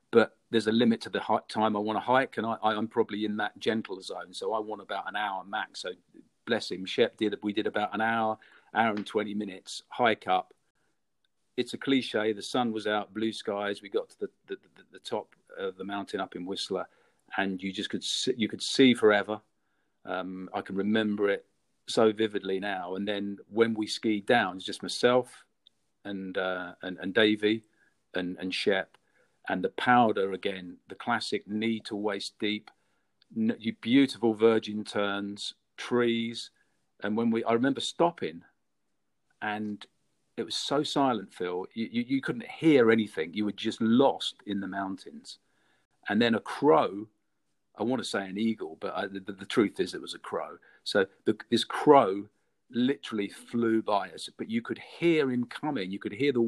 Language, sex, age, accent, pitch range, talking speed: English, male, 40-59, British, 100-120 Hz, 185 wpm